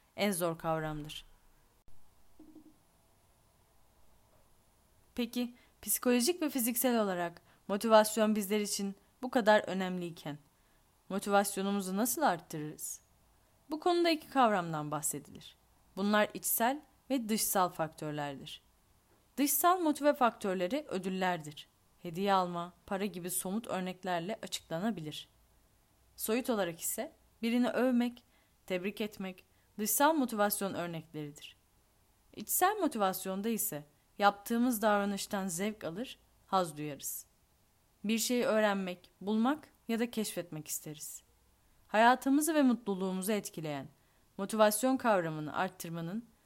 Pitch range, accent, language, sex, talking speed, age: 170-245 Hz, native, Turkish, female, 95 wpm, 10-29